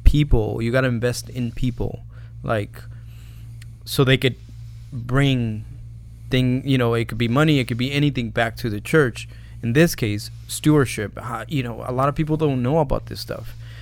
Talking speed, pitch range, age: 185 wpm, 115-130 Hz, 20-39